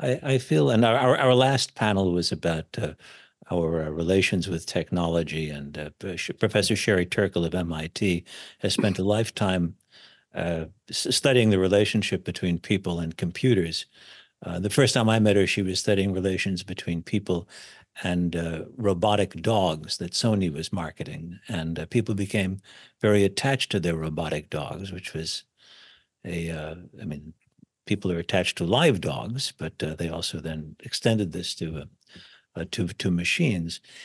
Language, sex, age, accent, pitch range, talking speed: English, male, 60-79, American, 85-110 Hz, 155 wpm